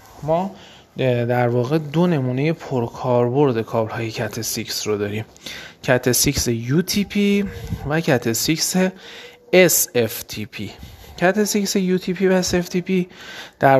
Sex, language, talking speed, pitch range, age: male, Persian, 120 wpm, 115-160 Hz, 30-49